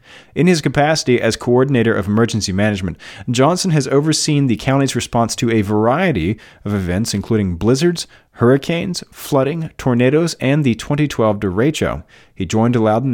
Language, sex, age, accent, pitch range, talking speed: English, male, 40-59, American, 105-145 Hz, 140 wpm